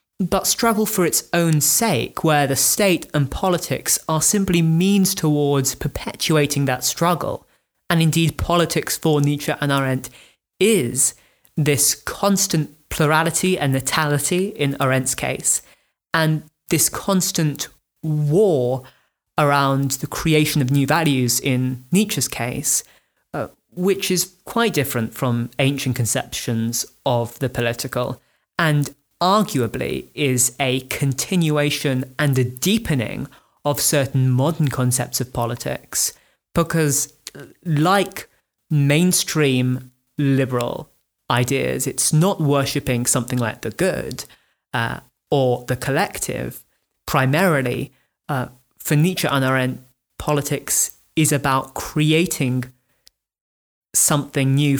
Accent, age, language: British, 20-39, English